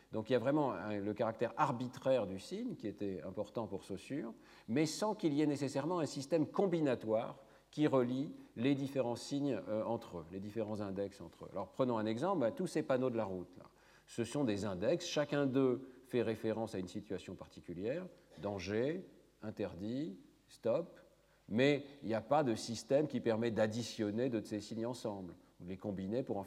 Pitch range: 100-135 Hz